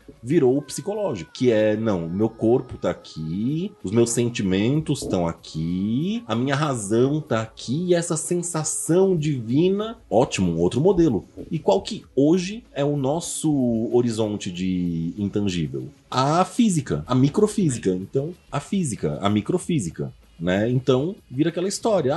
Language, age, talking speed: Portuguese, 30-49, 135 wpm